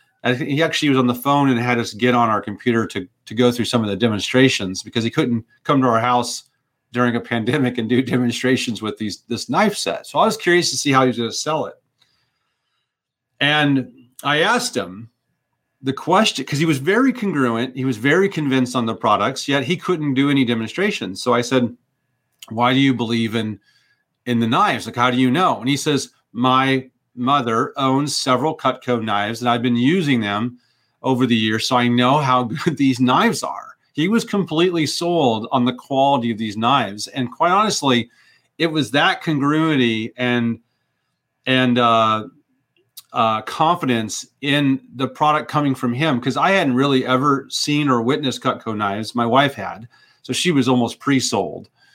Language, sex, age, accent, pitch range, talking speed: English, male, 40-59, American, 120-140 Hz, 190 wpm